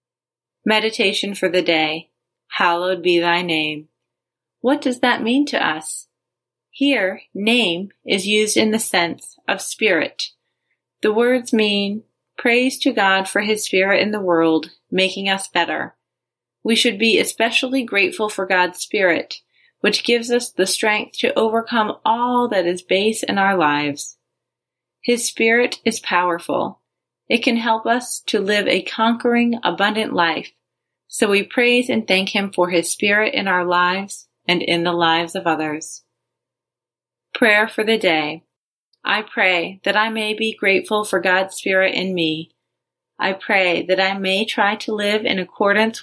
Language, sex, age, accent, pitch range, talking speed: English, female, 30-49, American, 180-225 Hz, 155 wpm